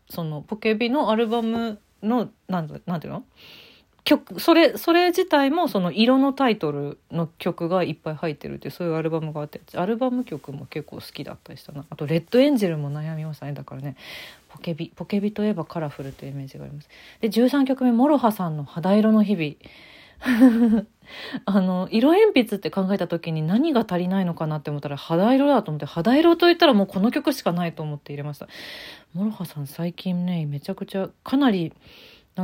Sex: female